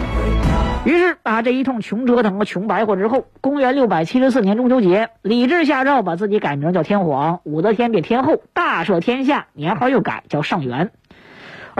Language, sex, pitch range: Chinese, female, 170-255 Hz